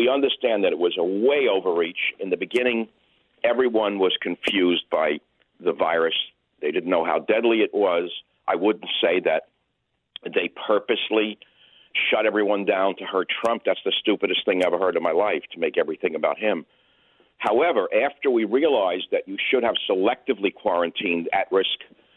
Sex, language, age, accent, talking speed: male, English, 50-69, American, 170 wpm